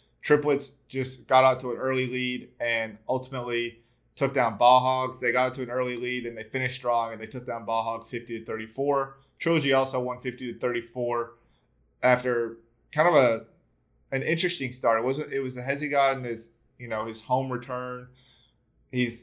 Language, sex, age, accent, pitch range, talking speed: English, male, 20-39, American, 115-135 Hz, 185 wpm